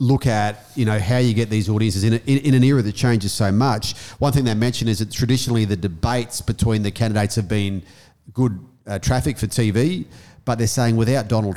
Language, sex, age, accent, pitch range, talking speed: English, male, 40-59, Australian, 105-125 Hz, 225 wpm